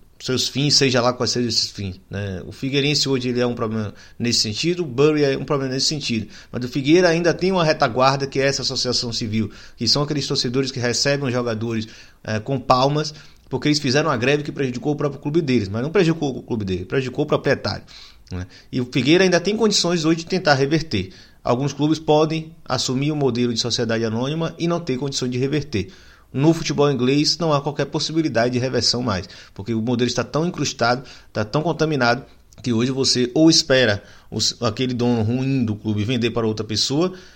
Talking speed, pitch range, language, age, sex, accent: 205 wpm, 115-155 Hz, Portuguese, 30-49, male, Brazilian